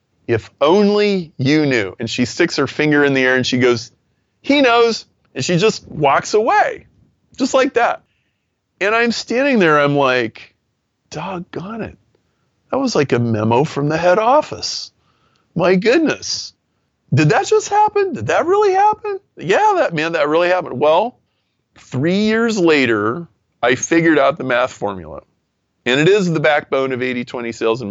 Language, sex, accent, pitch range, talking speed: English, male, American, 110-160 Hz, 170 wpm